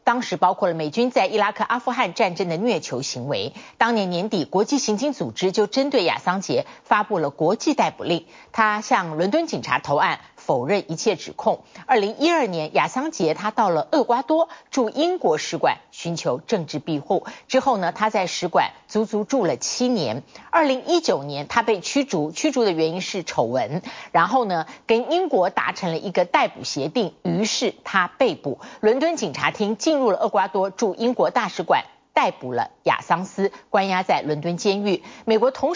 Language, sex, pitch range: Chinese, female, 175-255 Hz